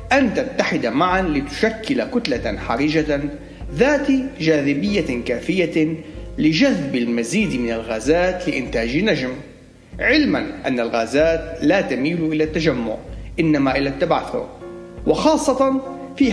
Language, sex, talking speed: Arabic, male, 100 wpm